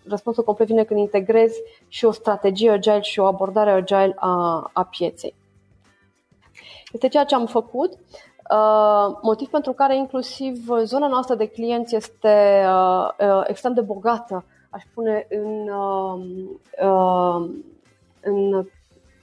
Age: 20-39